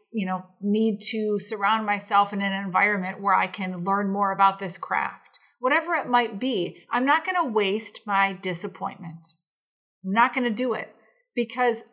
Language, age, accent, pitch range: English, 30-49, American, 195-245 Hz